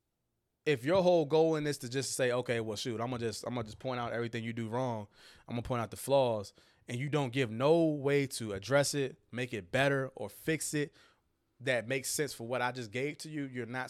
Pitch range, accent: 110-135 Hz, American